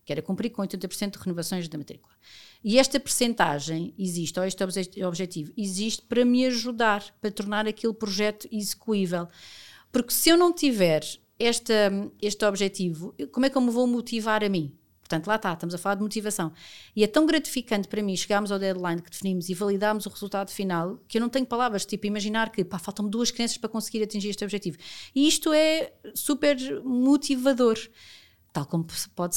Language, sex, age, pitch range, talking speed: Portuguese, female, 40-59, 180-230 Hz, 185 wpm